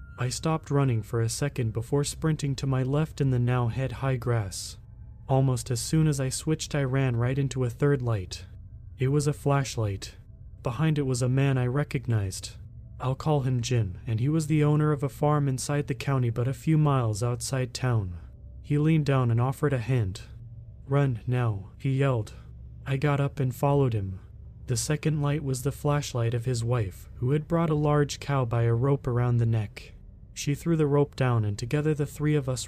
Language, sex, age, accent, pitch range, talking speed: English, male, 30-49, American, 115-145 Hz, 205 wpm